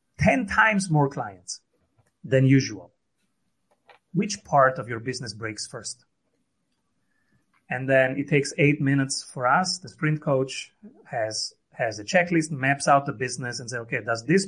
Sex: male